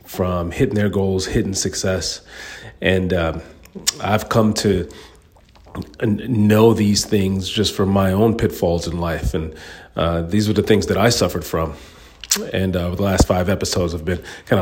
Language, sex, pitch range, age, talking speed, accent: English, male, 85-100 Hz, 40-59, 170 wpm, American